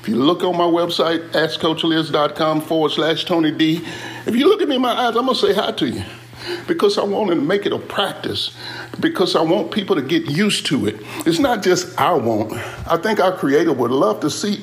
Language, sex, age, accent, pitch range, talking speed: English, male, 50-69, American, 160-240 Hz, 230 wpm